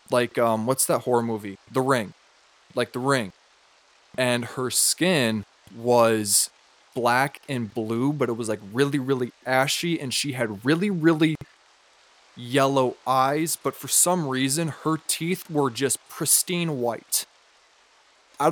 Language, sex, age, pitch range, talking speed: English, male, 20-39, 120-150 Hz, 140 wpm